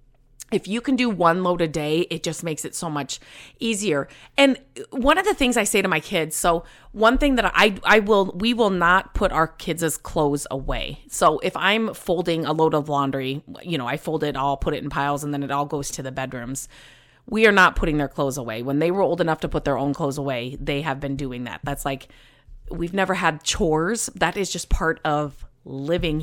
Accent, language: American, English